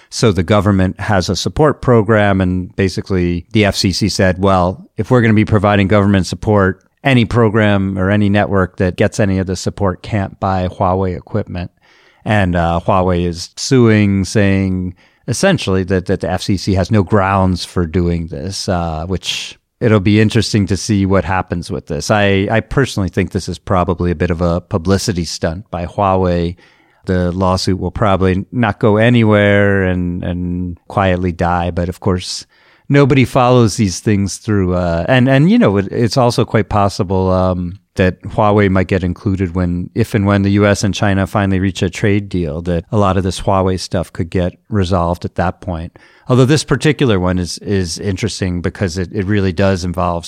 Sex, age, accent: male, 40-59, American